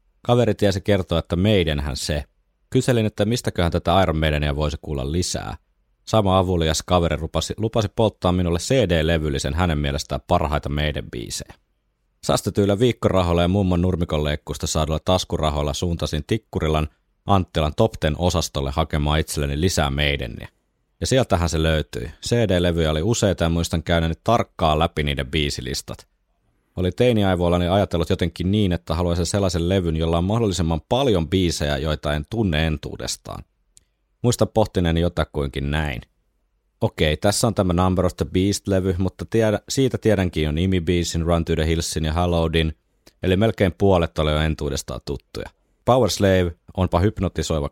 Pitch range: 80-100 Hz